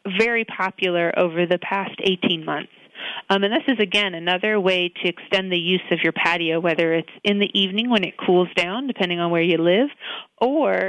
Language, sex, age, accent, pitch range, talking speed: English, female, 30-49, American, 175-205 Hz, 200 wpm